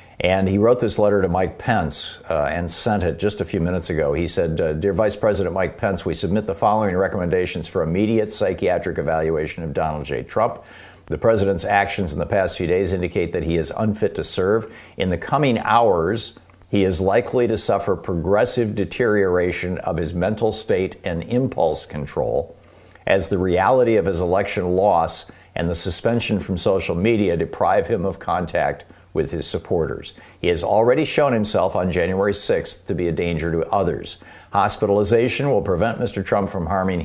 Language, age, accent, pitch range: English, 50-69, American, 85-105 Hz